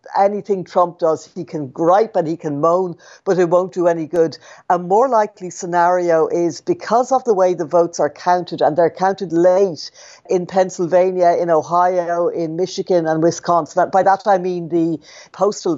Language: English